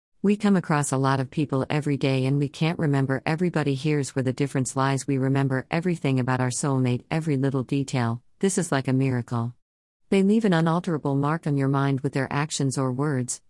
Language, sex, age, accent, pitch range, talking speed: Hindi, female, 50-69, American, 130-155 Hz, 205 wpm